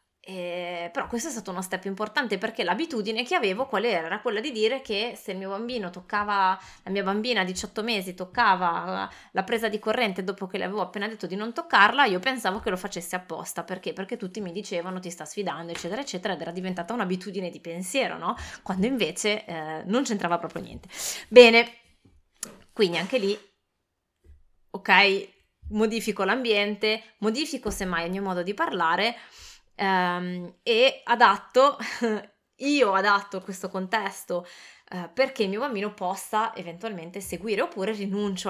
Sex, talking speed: female, 165 wpm